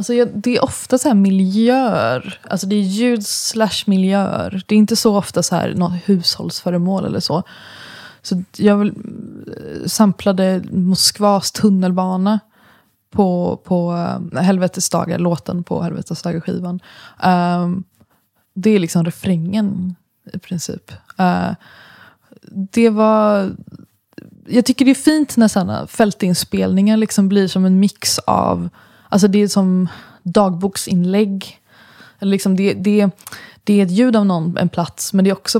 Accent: native